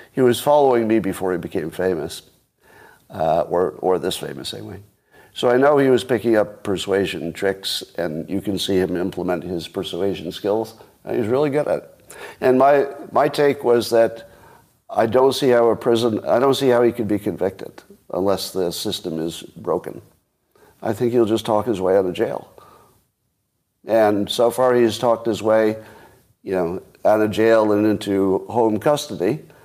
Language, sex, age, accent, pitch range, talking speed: English, male, 50-69, American, 100-125 Hz, 180 wpm